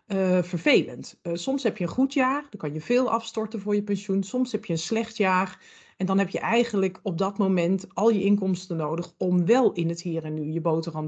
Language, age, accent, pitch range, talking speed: Dutch, 40-59, Dutch, 170-210 Hz, 240 wpm